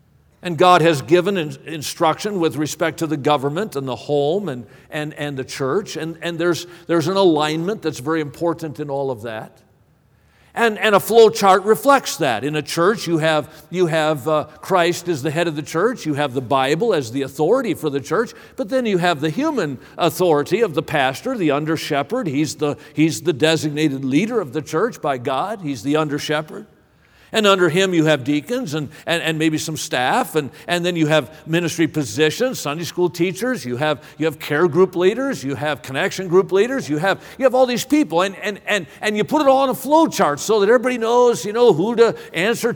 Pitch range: 150-215 Hz